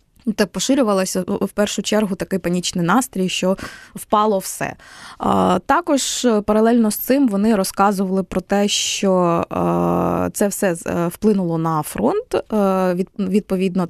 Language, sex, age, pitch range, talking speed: Ukrainian, female, 20-39, 180-220 Hz, 110 wpm